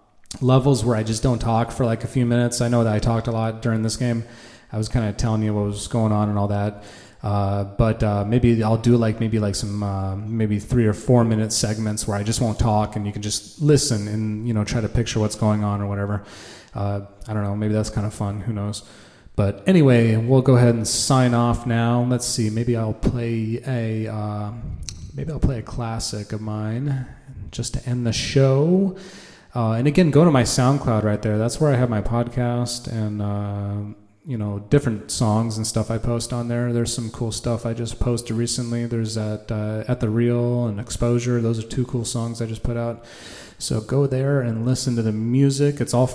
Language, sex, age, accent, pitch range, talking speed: English, male, 30-49, American, 105-125 Hz, 225 wpm